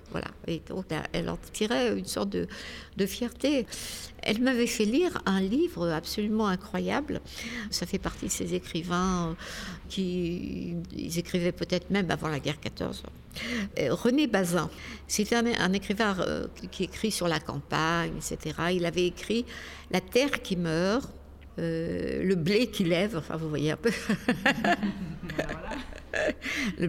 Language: French